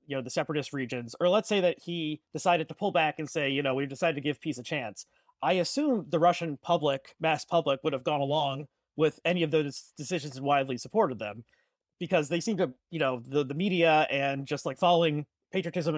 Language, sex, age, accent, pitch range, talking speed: English, male, 30-49, American, 145-180 Hz, 220 wpm